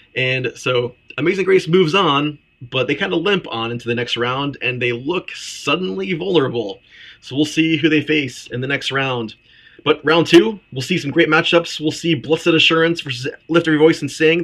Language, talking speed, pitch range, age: English, 205 wpm, 130-160 Hz, 30-49